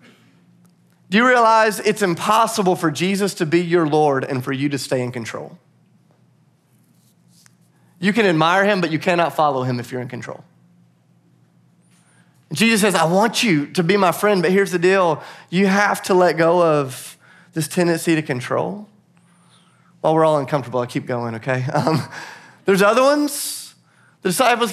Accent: American